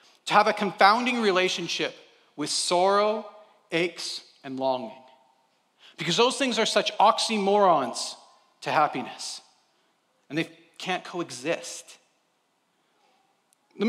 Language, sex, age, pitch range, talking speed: English, male, 40-59, 145-200 Hz, 100 wpm